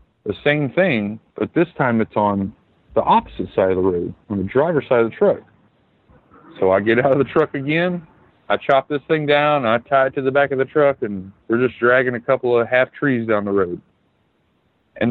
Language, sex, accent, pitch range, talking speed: English, male, American, 100-135 Hz, 225 wpm